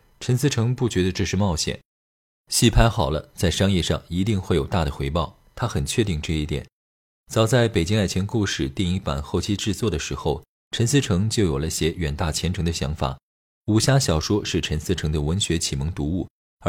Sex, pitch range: male, 75-110 Hz